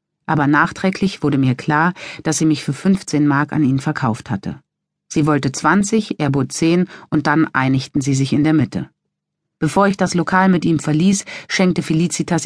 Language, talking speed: German, 185 wpm